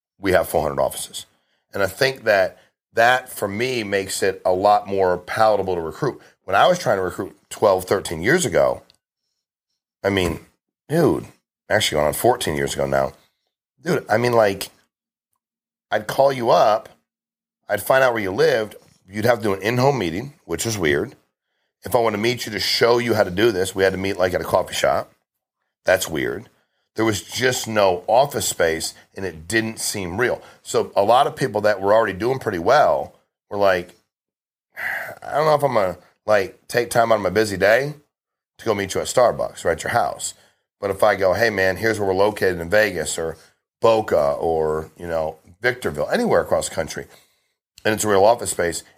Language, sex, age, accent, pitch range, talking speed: English, male, 40-59, American, 90-120 Hz, 200 wpm